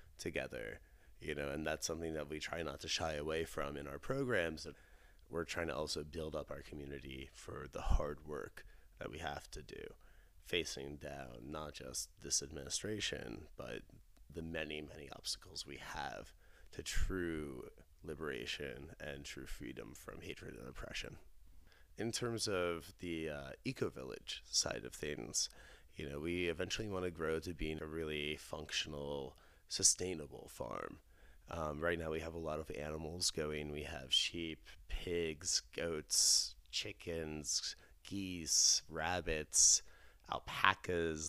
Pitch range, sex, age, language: 75-85 Hz, male, 30-49, English